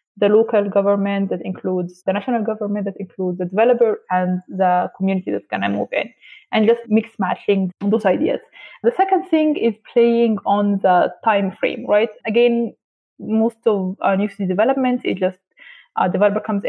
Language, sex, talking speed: English, female, 175 wpm